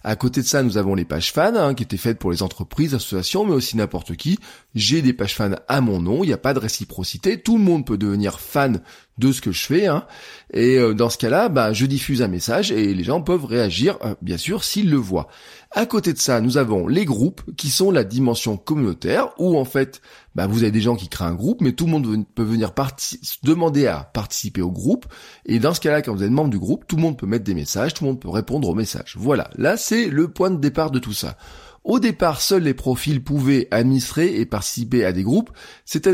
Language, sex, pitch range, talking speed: French, male, 110-150 Hz, 250 wpm